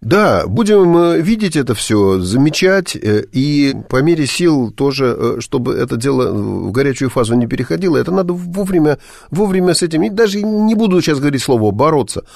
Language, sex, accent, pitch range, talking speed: Russian, male, native, 110-155 Hz, 160 wpm